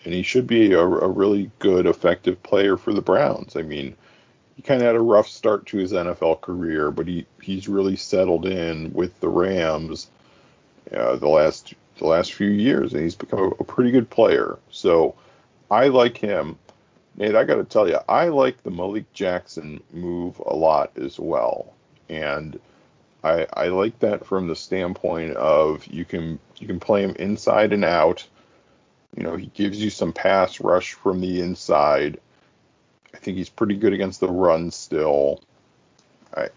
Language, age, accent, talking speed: English, 40-59, American, 175 wpm